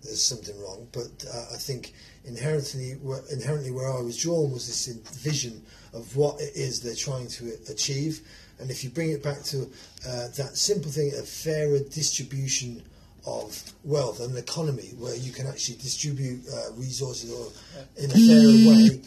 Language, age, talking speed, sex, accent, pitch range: English, 30-49, 170 wpm, male, British, 135-160 Hz